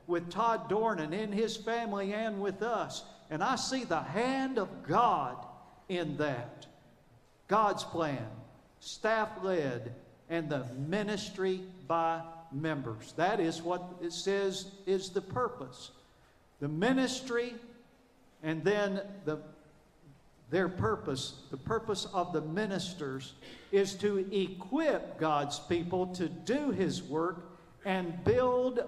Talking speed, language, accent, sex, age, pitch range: 120 wpm, English, American, male, 50-69, 155-210 Hz